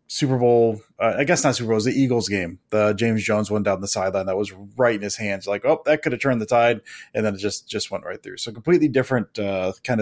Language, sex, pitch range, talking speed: English, male, 110-140 Hz, 280 wpm